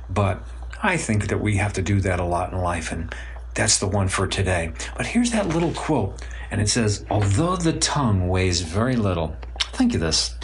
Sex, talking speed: male, 205 wpm